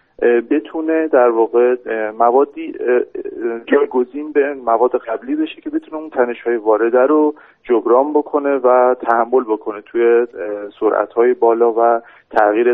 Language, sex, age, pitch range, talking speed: Persian, male, 40-59, 115-140 Hz, 125 wpm